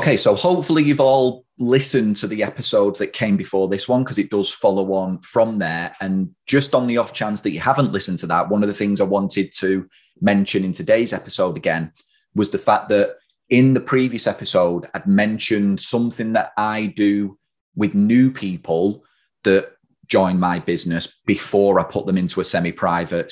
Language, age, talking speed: English, 30-49, 190 wpm